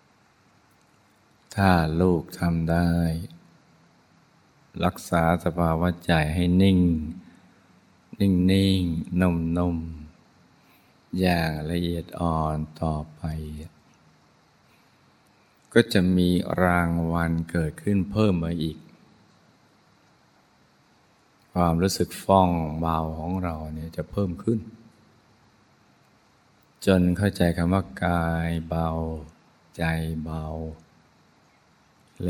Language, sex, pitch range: Thai, male, 80-95 Hz